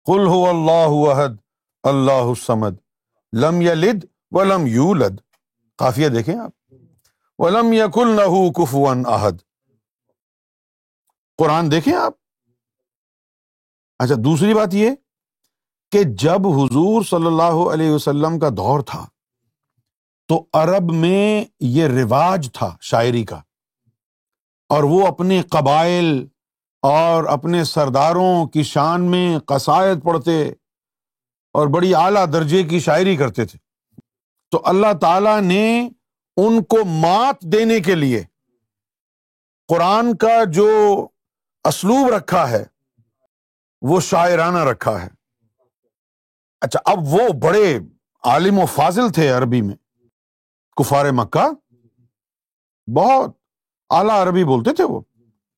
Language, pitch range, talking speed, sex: Urdu, 120-185 Hz, 90 wpm, male